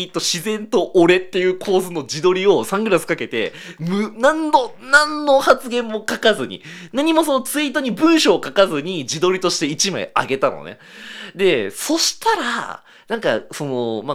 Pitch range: 155-260 Hz